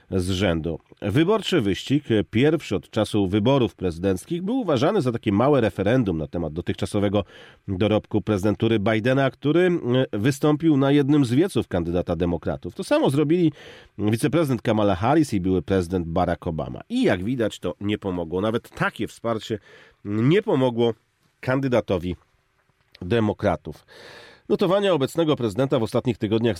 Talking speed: 135 wpm